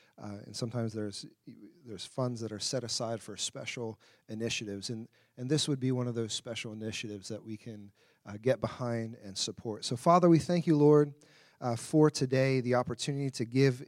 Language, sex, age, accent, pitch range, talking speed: English, male, 40-59, American, 120-150 Hz, 190 wpm